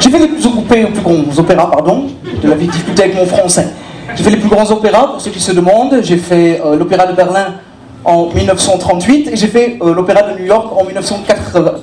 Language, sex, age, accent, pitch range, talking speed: French, male, 40-59, French, 190-255 Hz, 235 wpm